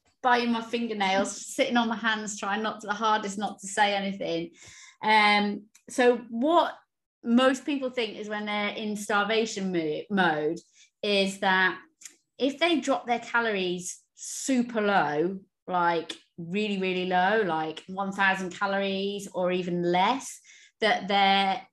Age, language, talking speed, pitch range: 30-49, English, 135 wpm, 180-230 Hz